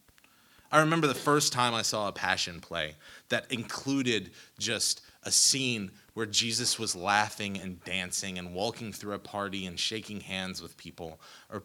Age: 30-49